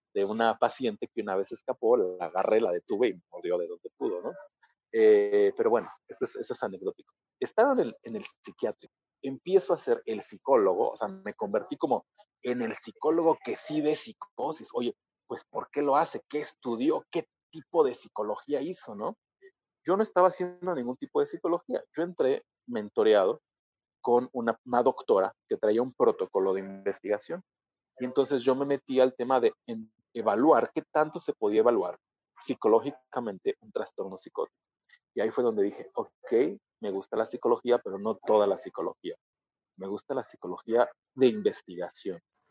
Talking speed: 175 wpm